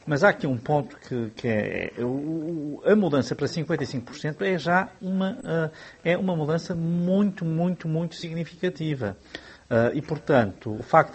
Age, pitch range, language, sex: 50-69, 130-185 Hz, Portuguese, male